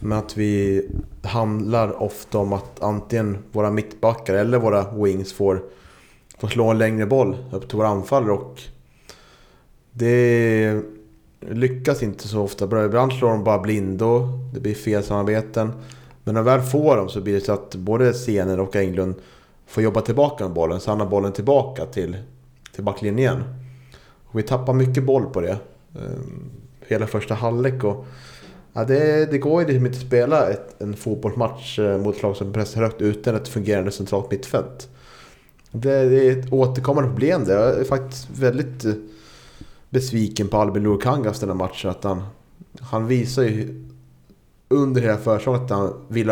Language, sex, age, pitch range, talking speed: Swedish, male, 30-49, 100-130 Hz, 160 wpm